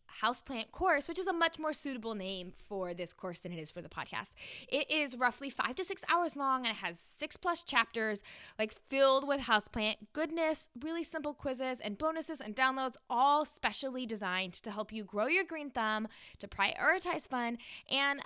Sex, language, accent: female, English, American